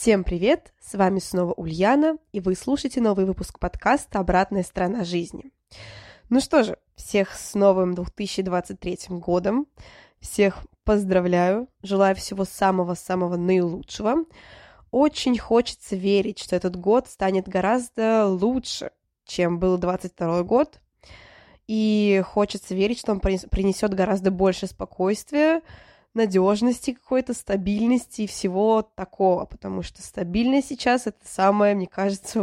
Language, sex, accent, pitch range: Russian, female, native, 185-225 Hz